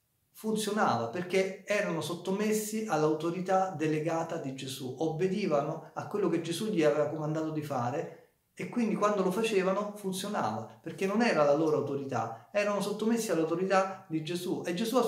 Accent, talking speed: native, 150 wpm